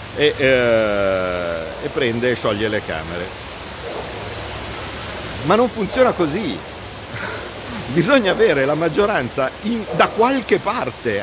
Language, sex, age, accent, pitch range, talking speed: Italian, male, 50-69, native, 130-185 Hz, 90 wpm